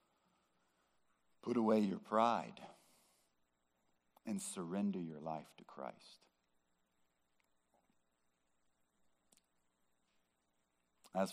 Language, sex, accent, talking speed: English, male, American, 60 wpm